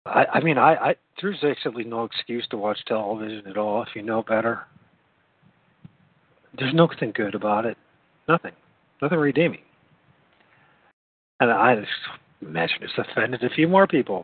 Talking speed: 140 wpm